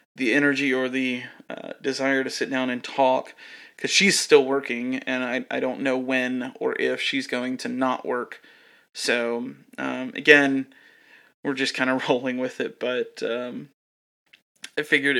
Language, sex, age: English, male, 30-49